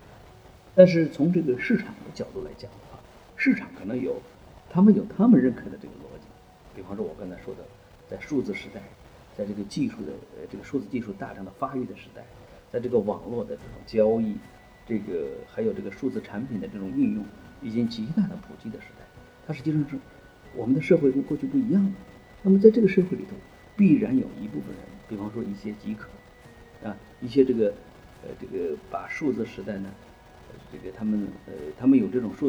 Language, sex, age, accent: Chinese, male, 50-69, native